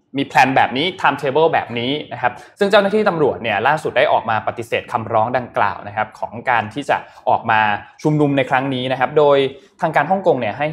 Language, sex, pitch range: Thai, male, 110-145 Hz